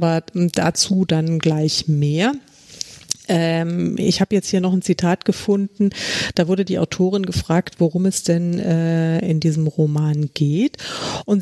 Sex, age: female, 40-59